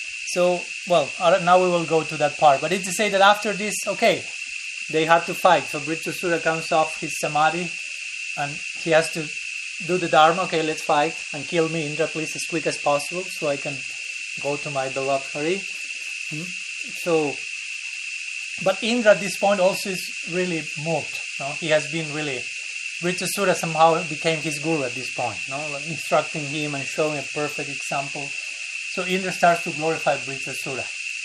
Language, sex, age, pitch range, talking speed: English, male, 30-49, 150-180 Hz, 180 wpm